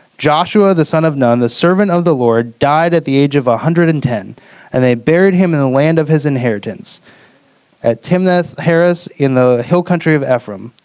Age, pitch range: 30-49, 130-175 Hz